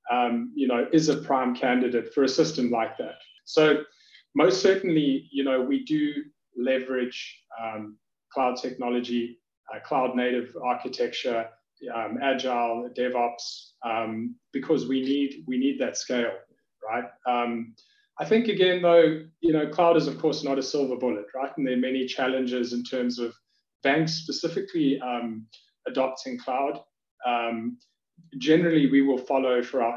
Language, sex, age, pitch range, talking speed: English, male, 30-49, 120-145 Hz, 150 wpm